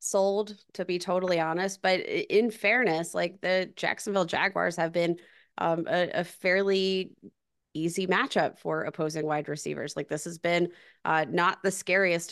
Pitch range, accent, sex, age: 160-185 Hz, American, female, 20-39